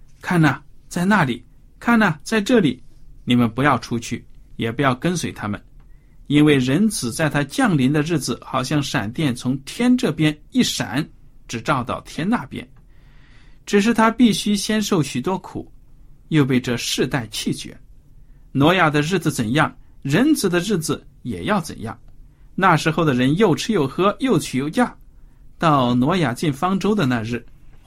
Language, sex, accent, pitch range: Chinese, male, native, 125-160 Hz